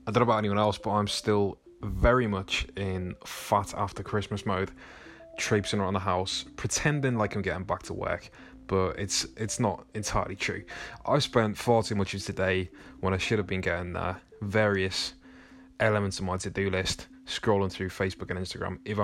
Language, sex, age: English, male, 20-39